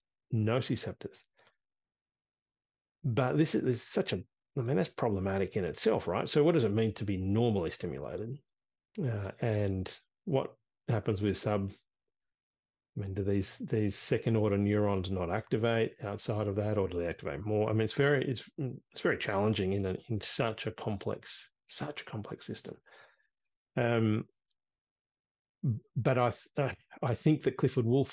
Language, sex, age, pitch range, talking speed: English, male, 40-59, 100-120 Hz, 160 wpm